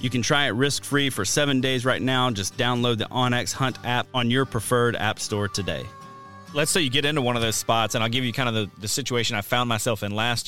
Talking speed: 260 wpm